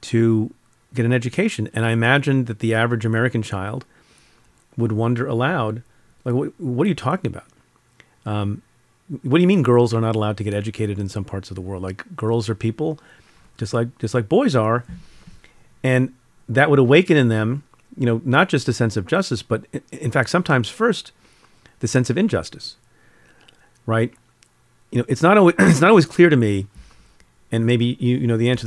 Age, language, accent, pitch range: 40-59, English, American, 110-135 Hz